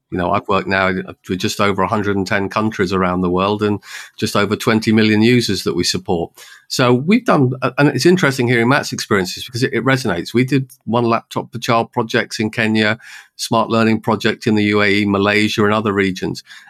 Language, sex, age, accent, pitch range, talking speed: English, male, 40-59, British, 100-120 Hz, 195 wpm